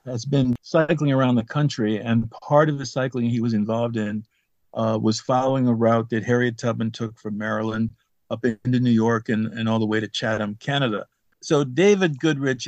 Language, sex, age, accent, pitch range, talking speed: English, male, 50-69, American, 105-125 Hz, 195 wpm